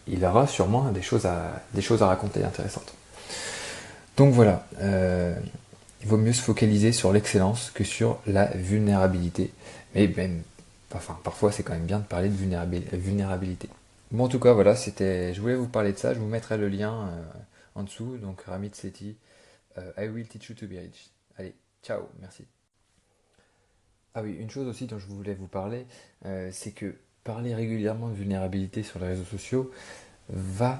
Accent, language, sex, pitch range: French, French, male, 95-110 Hz